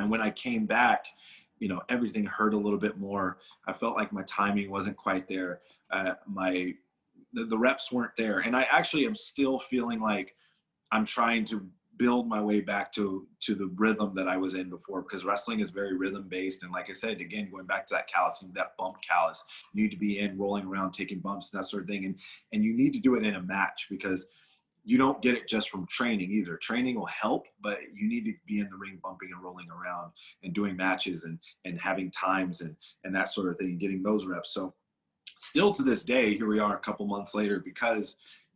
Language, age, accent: English, 30-49, American